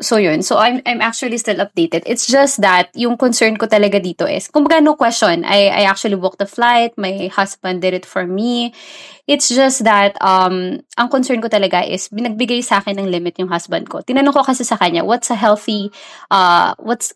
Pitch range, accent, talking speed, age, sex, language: 190-245 Hz, Filipino, 205 wpm, 20-39, female, English